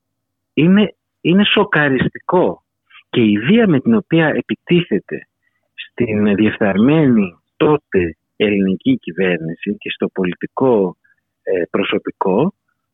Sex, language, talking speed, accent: male, Greek, 90 wpm, native